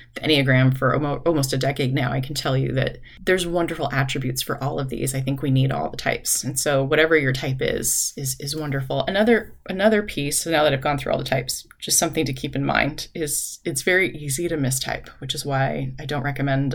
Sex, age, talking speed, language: female, 20-39, 230 wpm, English